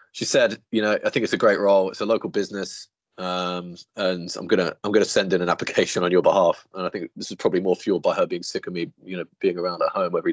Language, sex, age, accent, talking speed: English, male, 20-39, British, 290 wpm